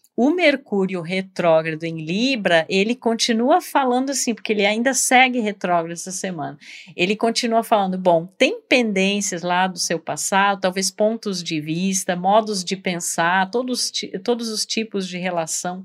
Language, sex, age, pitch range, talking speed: Portuguese, female, 50-69, 175-230 Hz, 150 wpm